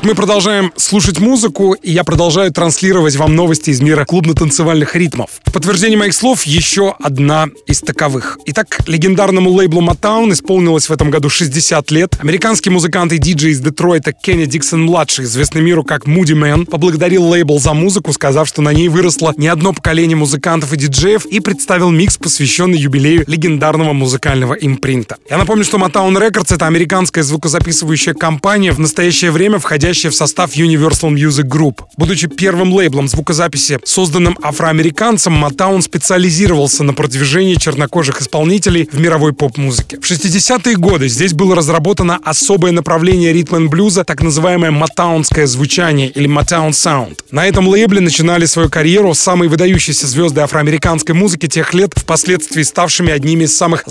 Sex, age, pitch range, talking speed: male, 20-39, 150-185 Hz, 155 wpm